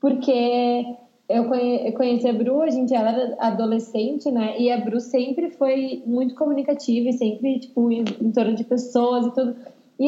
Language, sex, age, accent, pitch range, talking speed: Portuguese, female, 10-29, Brazilian, 225-260 Hz, 175 wpm